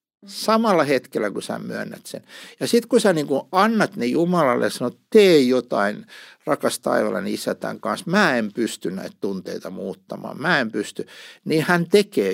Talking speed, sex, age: 165 wpm, male, 60-79